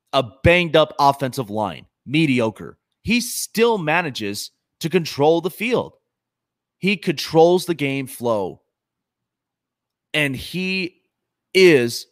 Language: English